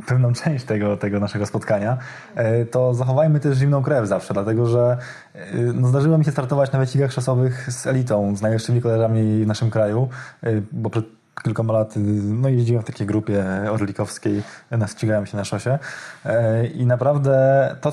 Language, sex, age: Polish, male, 20-39